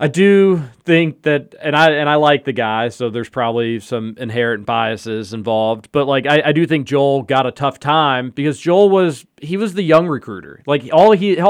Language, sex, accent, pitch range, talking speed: English, male, American, 120-155 Hz, 220 wpm